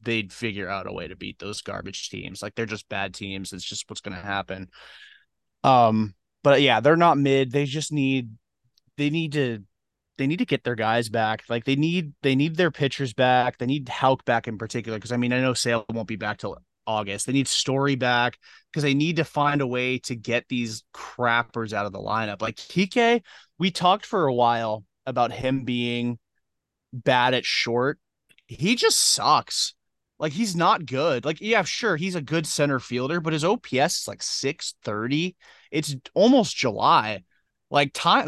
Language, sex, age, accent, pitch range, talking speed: English, male, 20-39, American, 115-145 Hz, 195 wpm